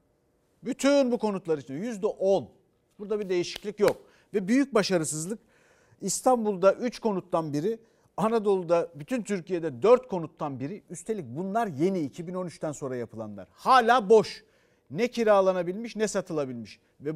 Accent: native